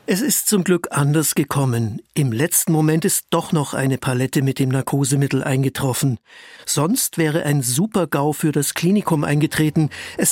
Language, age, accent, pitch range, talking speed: German, 60-79, German, 130-160 Hz, 155 wpm